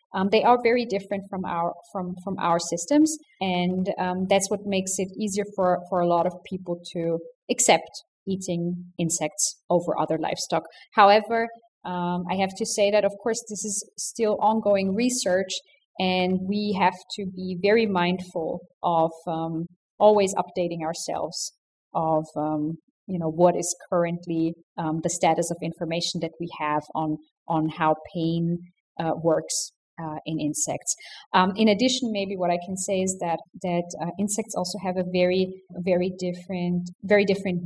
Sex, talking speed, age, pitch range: female, 165 wpm, 30-49, 175-205 Hz